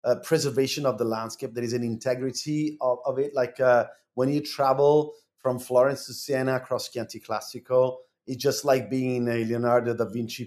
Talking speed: 185 wpm